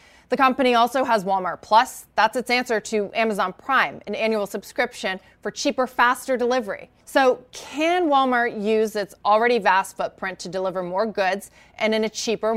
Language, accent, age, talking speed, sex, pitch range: English, American, 30-49, 165 wpm, female, 215-265 Hz